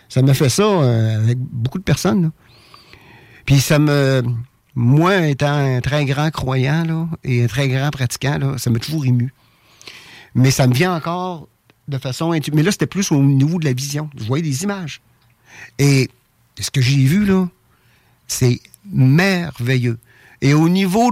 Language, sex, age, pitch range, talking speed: French, male, 50-69, 120-160 Hz, 175 wpm